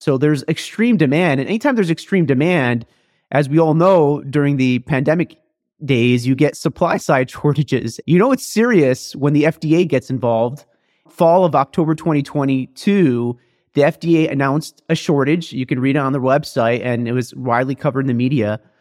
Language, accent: English, American